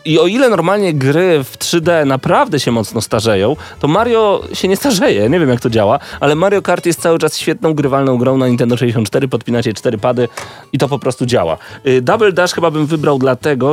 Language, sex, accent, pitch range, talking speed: Polish, male, native, 120-155 Hz, 210 wpm